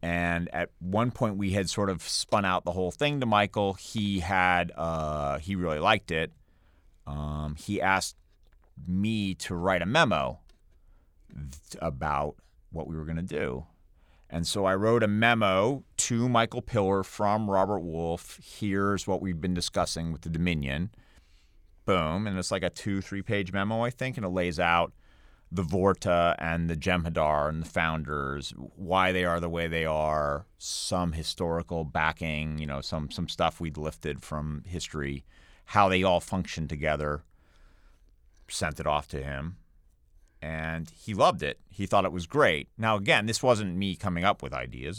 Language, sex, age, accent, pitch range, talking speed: English, male, 30-49, American, 75-100 Hz, 170 wpm